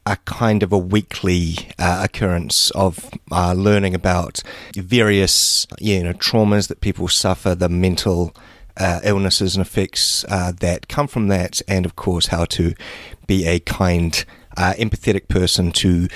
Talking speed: 150 wpm